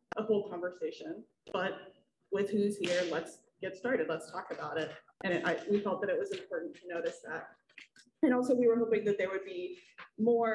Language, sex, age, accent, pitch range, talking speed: English, female, 20-39, American, 180-240 Hz, 205 wpm